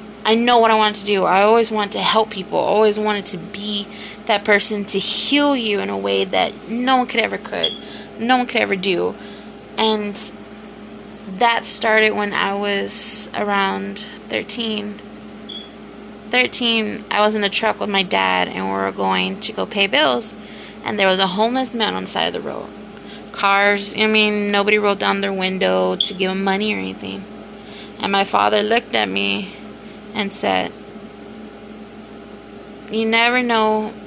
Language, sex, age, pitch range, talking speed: English, female, 20-39, 195-220 Hz, 175 wpm